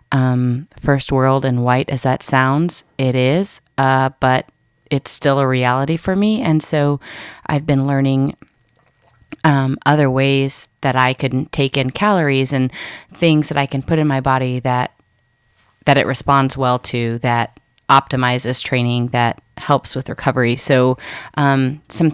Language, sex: English, female